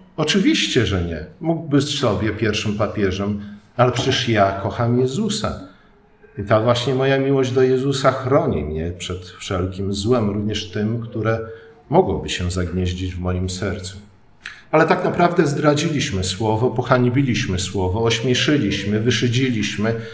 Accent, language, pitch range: native, Polish, 95-125 Hz